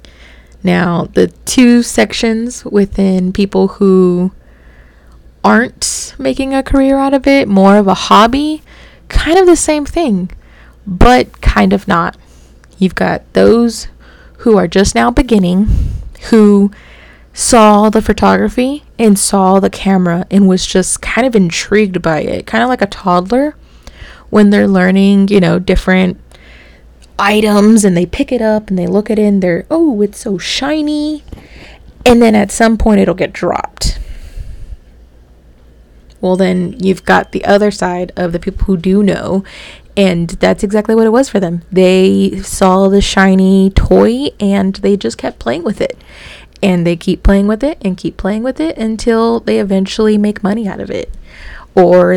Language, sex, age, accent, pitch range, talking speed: English, female, 20-39, American, 180-220 Hz, 160 wpm